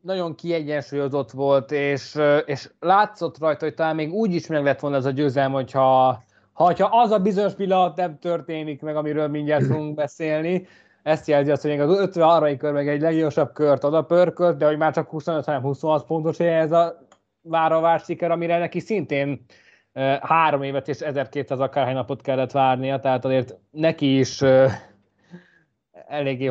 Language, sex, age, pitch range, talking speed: Hungarian, male, 20-39, 140-180 Hz, 165 wpm